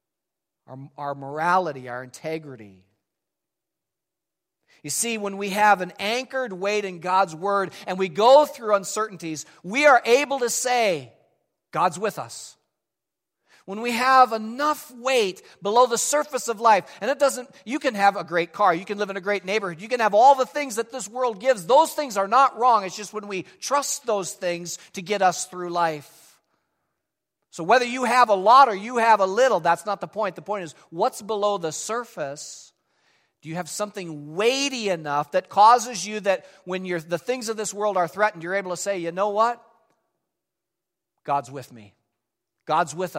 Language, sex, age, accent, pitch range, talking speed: English, male, 50-69, American, 170-235 Hz, 190 wpm